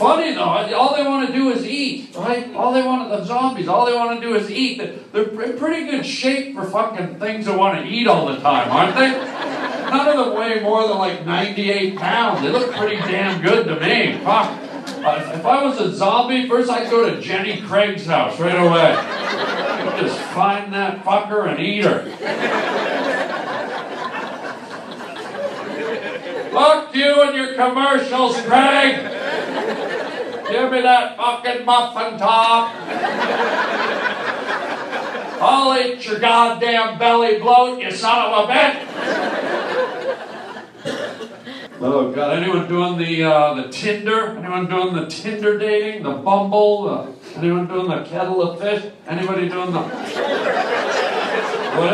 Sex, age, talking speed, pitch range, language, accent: male, 50-69, 145 wpm, 195-250 Hz, English, American